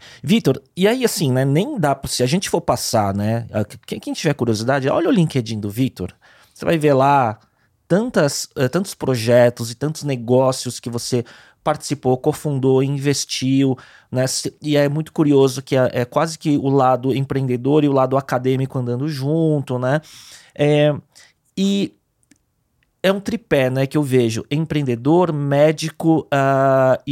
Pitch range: 125-150 Hz